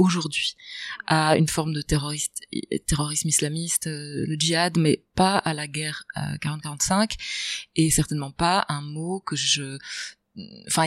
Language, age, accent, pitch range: French, 20-39, French, 145-175 Hz